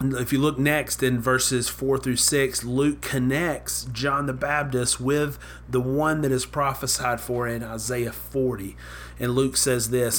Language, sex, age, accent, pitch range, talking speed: English, male, 30-49, American, 115-135 Hz, 165 wpm